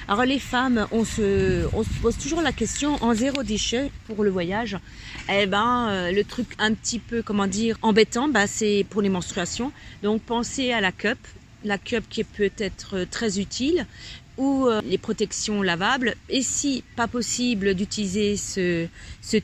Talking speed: 175 wpm